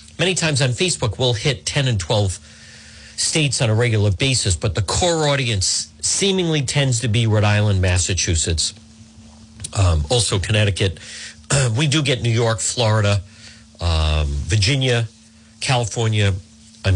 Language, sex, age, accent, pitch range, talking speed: English, male, 50-69, American, 95-125 Hz, 140 wpm